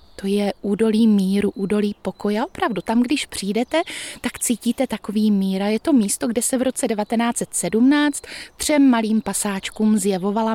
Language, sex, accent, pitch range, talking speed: Czech, female, native, 195-230 Hz, 155 wpm